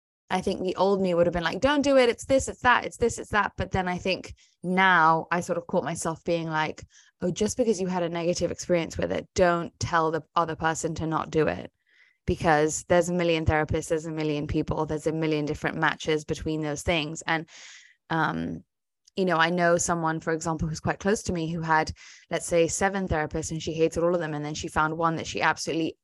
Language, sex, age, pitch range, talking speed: English, female, 20-39, 160-195 Hz, 235 wpm